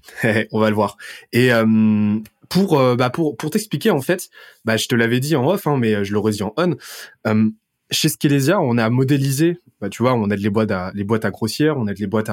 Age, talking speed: 20-39, 255 wpm